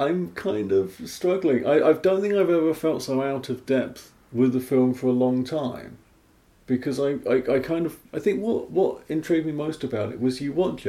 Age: 40-59